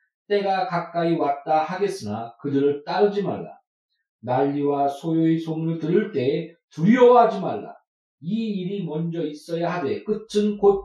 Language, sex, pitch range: Korean, male, 160-210 Hz